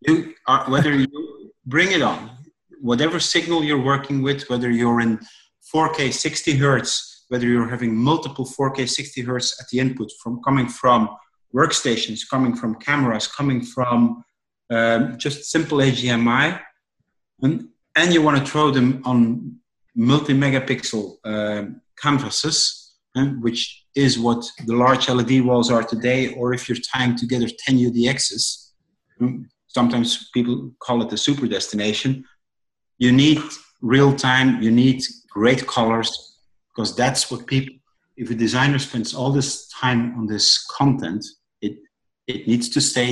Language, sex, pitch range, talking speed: English, male, 115-135 Hz, 140 wpm